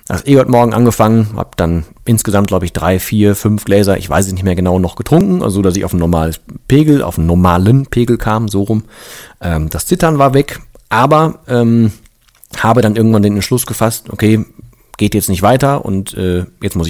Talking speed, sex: 200 wpm, male